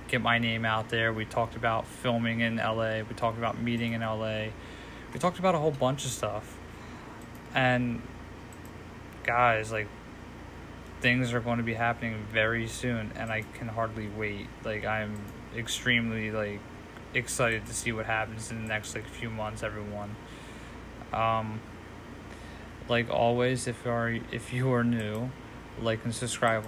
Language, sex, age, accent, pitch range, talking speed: English, male, 20-39, American, 110-125 Hz, 155 wpm